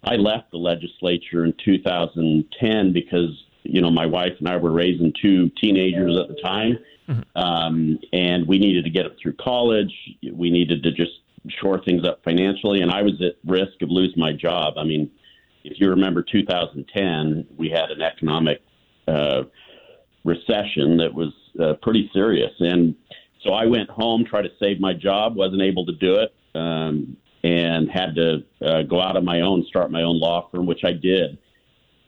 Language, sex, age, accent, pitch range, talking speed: English, male, 50-69, American, 85-95 Hz, 180 wpm